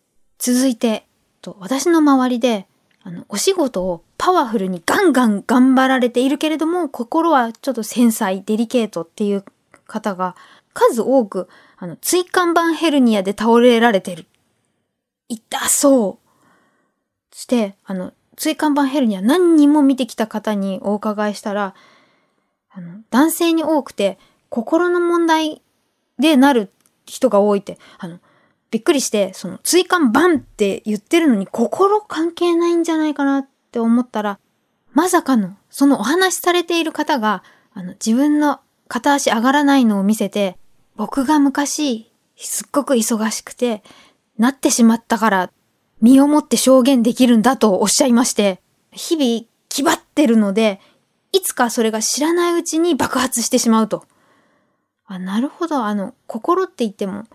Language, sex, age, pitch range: Japanese, female, 20-39, 215-300 Hz